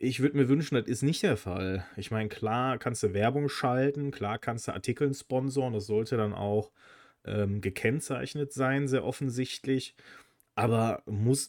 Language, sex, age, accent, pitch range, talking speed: German, male, 30-49, German, 105-130 Hz, 165 wpm